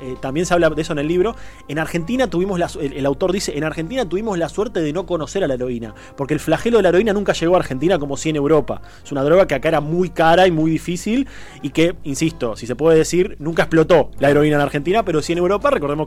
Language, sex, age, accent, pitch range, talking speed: Spanish, male, 20-39, Argentinian, 145-195 Hz, 260 wpm